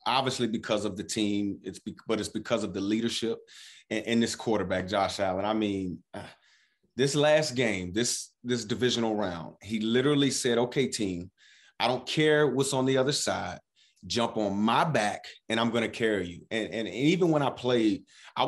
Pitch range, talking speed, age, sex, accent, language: 110-135 Hz, 200 wpm, 30-49, male, American, English